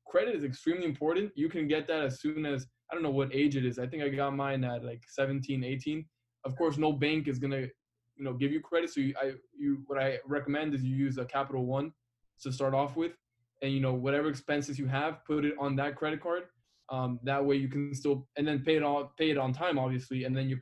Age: 20-39